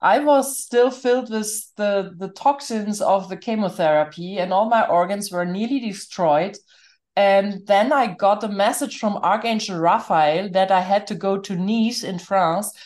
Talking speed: 170 wpm